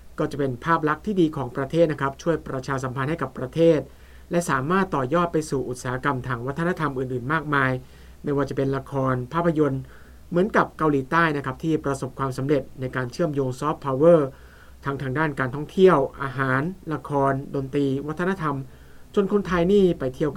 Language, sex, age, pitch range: Thai, male, 60-79, 130-170 Hz